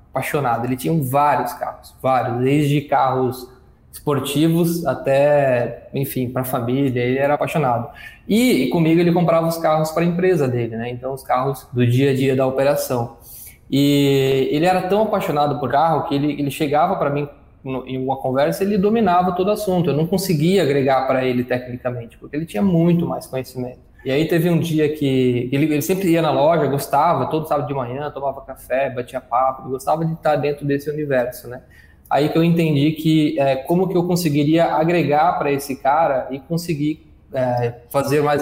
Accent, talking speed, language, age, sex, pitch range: Brazilian, 185 wpm, Portuguese, 20-39, male, 130-160 Hz